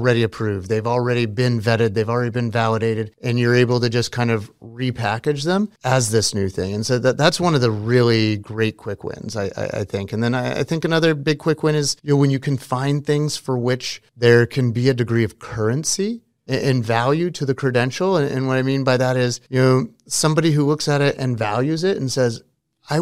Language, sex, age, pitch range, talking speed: Arabic, male, 30-49, 115-140 Hz, 235 wpm